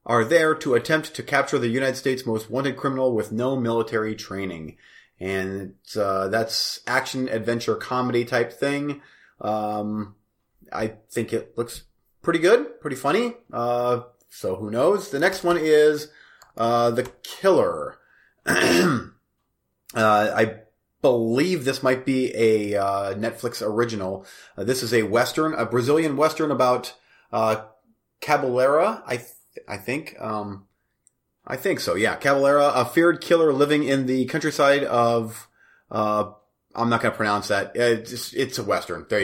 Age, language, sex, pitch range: 30-49, English, male, 105-135 Hz